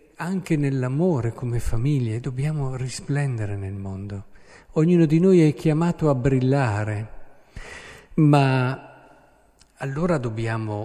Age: 50-69